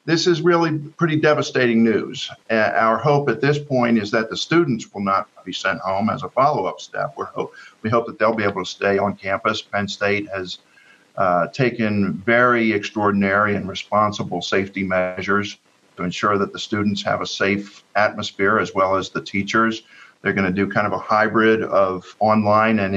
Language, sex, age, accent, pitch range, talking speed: English, male, 50-69, American, 95-110 Hz, 190 wpm